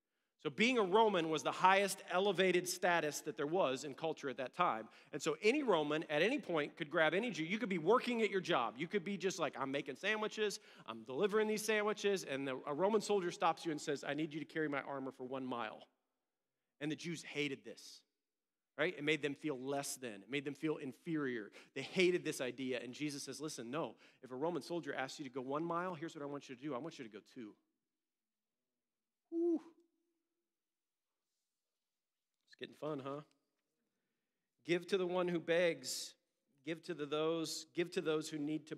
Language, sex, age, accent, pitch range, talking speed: English, male, 40-59, American, 140-175 Hz, 210 wpm